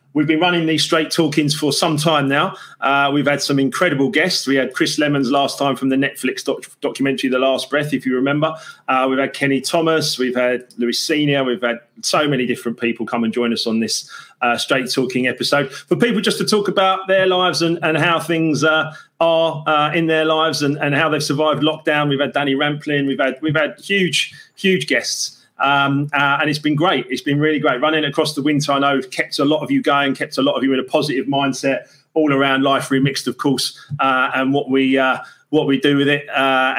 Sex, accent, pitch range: male, British, 135-165 Hz